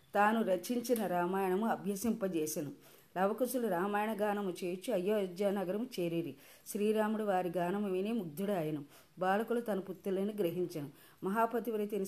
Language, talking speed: Telugu, 115 wpm